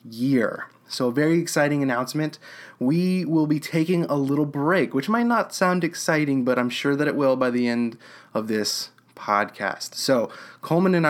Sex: male